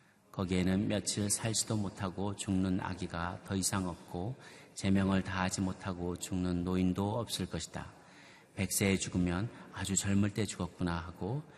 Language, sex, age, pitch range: Korean, male, 40-59, 95-140 Hz